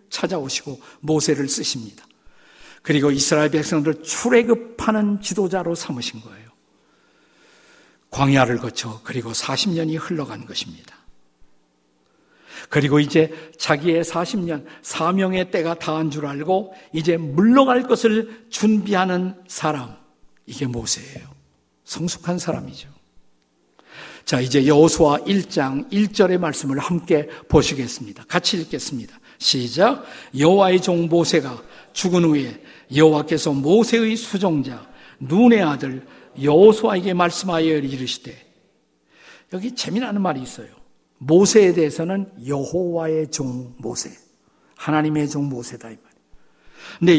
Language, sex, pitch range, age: Korean, male, 135-185 Hz, 50-69